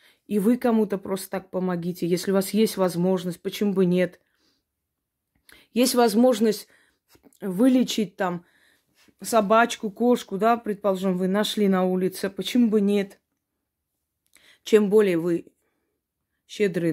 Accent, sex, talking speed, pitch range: native, female, 115 wpm, 185-225 Hz